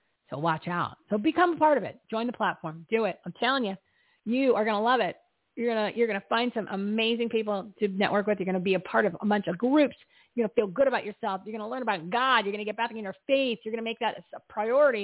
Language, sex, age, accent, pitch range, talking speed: English, female, 40-59, American, 195-250 Hz, 295 wpm